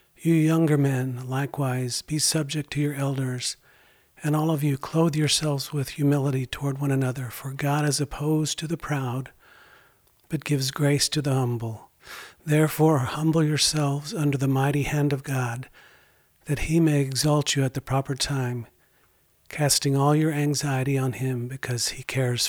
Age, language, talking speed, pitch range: 50-69, English, 160 wpm, 135-155 Hz